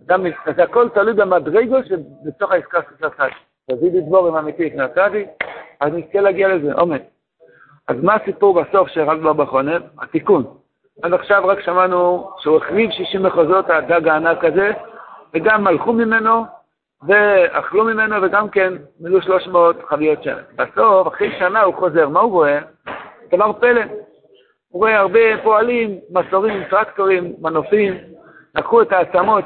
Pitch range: 170-215 Hz